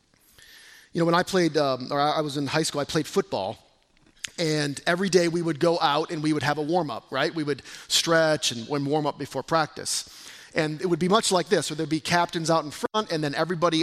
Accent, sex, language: American, male, English